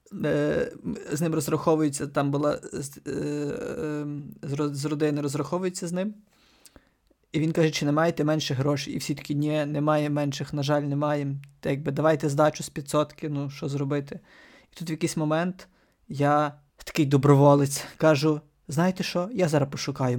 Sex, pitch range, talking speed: male, 145-165 Hz, 150 wpm